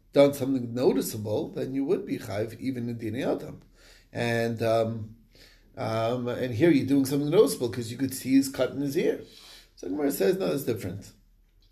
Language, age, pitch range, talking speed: English, 30-49, 115-140 Hz, 185 wpm